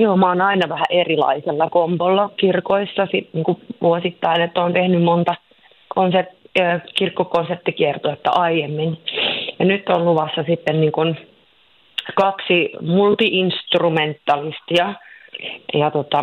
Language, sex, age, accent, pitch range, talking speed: Finnish, female, 30-49, native, 155-180 Hz, 105 wpm